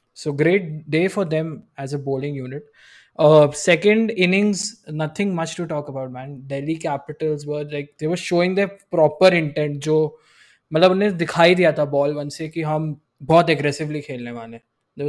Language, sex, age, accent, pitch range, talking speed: Hindi, male, 20-39, native, 140-165 Hz, 170 wpm